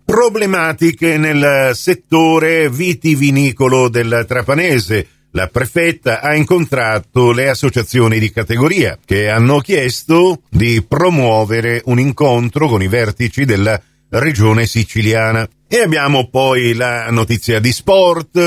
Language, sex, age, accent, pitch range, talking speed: Italian, male, 50-69, native, 110-140 Hz, 110 wpm